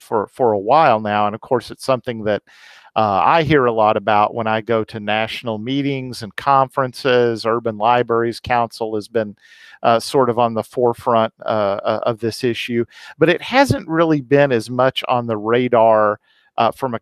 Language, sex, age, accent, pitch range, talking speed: English, male, 50-69, American, 115-145 Hz, 185 wpm